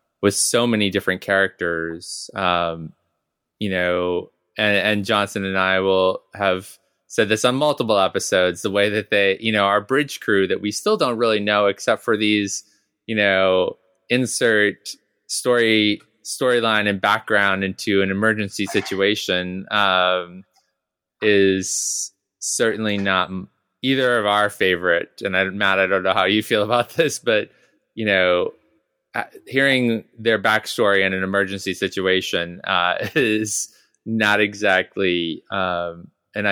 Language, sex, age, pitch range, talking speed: English, male, 20-39, 90-105 Hz, 140 wpm